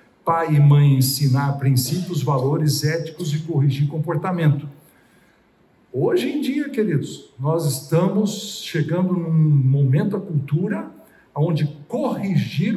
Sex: male